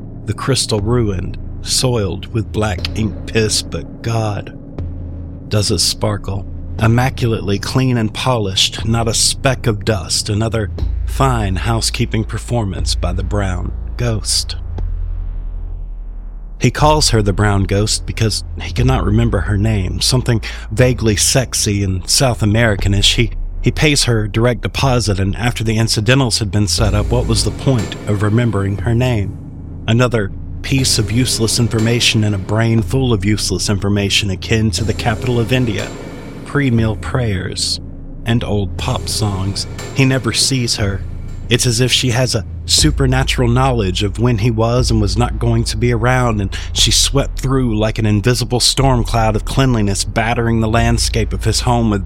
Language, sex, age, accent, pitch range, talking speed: English, male, 50-69, American, 95-120 Hz, 155 wpm